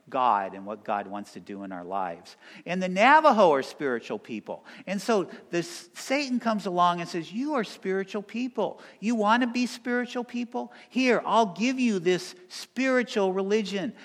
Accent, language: American, English